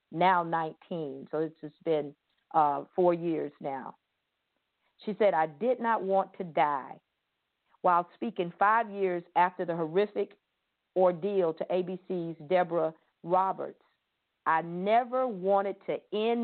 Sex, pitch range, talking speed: female, 170-250 Hz, 130 wpm